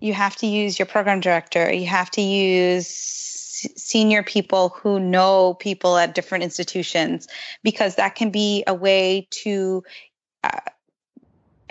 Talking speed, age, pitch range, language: 140 wpm, 20-39, 185-215 Hz, English